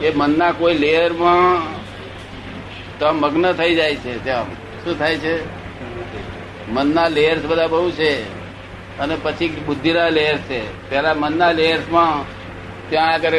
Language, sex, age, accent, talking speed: Gujarati, male, 60-79, native, 65 wpm